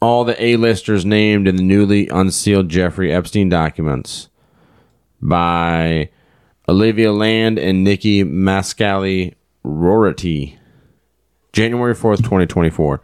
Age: 30-49